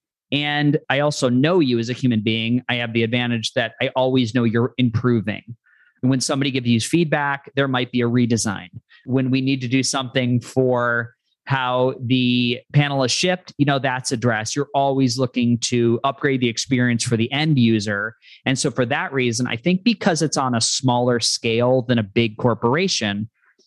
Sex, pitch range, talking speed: male, 120-140 Hz, 185 wpm